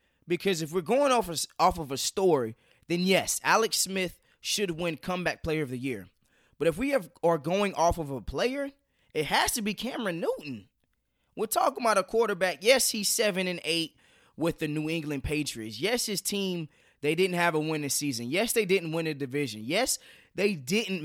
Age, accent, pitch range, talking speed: 20-39, American, 155-230 Hz, 200 wpm